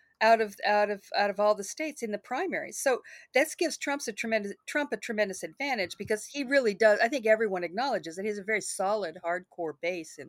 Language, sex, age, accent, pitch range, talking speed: English, female, 50-69, American, 175-220 Hz, 225 wpm